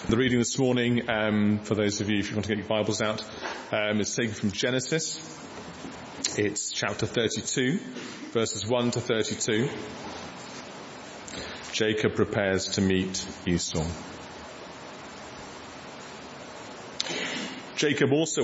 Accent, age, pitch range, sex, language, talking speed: British, 30-49, 100-125 Hz, male, English, 115 wpm